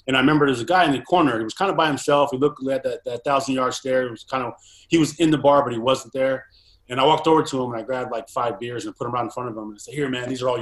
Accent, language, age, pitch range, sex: American, English, 30-49, 115-135 Hz, male